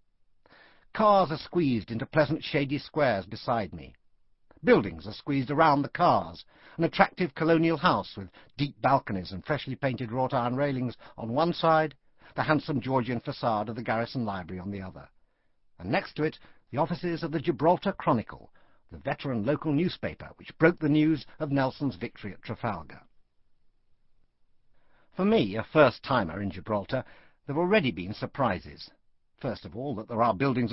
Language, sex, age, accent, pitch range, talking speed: English, male, 60-79, British, 115-160 Hz, 160 wpm